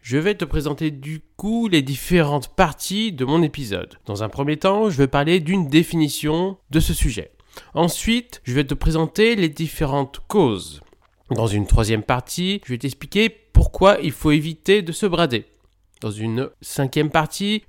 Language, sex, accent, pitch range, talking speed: French, male, French, 115-170 Hz, 170 wpm